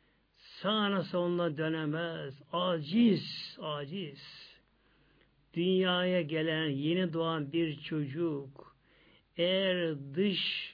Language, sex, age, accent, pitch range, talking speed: Turkish, male, 60-79, native, 150-185 Hz, 75 wpm